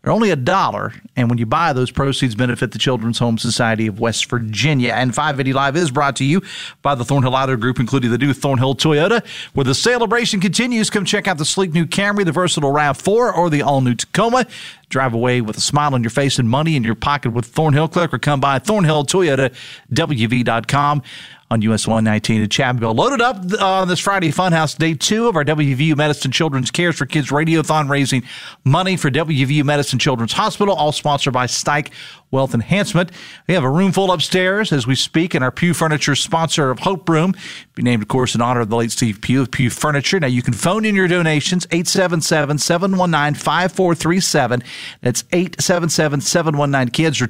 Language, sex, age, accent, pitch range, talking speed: English, male, 40-59, American, 130-175 Hz, 195 wpm